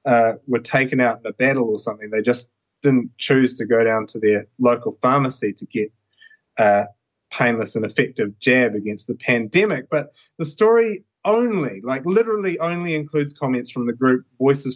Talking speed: 175 wpm